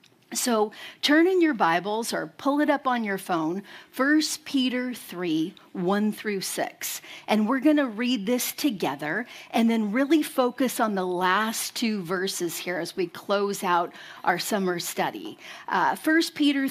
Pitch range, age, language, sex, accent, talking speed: 195-270 Hz, 40-59, English, female, American, 160 wpm